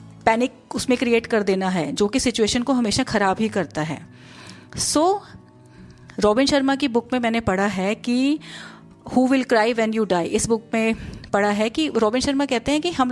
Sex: female